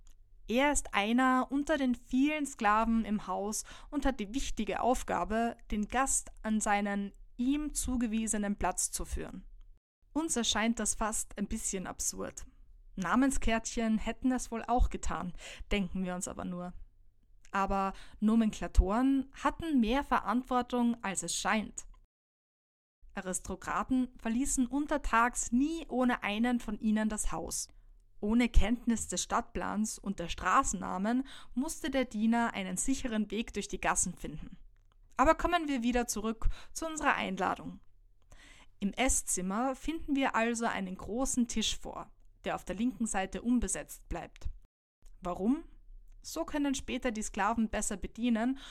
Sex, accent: female, German